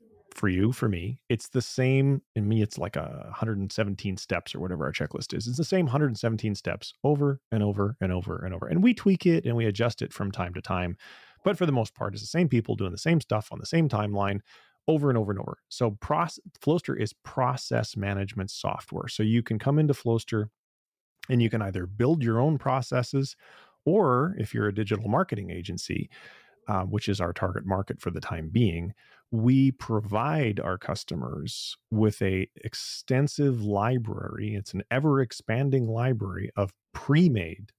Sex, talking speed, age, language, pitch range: male, 185 wpm, 30-49, English, 95-125 Hz